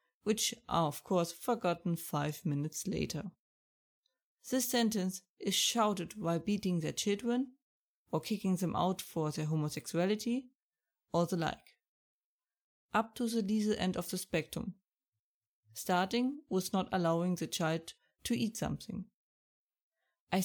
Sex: female